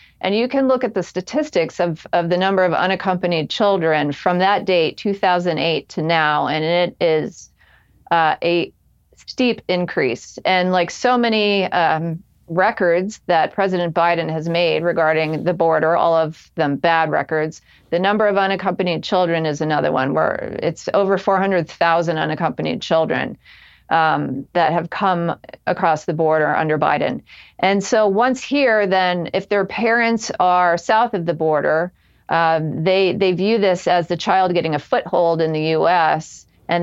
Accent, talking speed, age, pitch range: American, 160 wpm, 40-59, 165-195 Hz